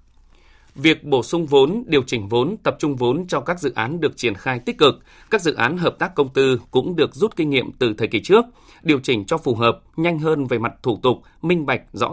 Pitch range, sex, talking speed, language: 120-155 Hz, male, 245 wpm, Vietnamese